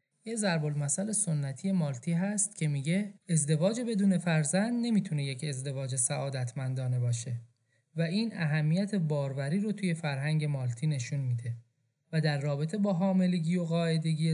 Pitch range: 135-175 Hz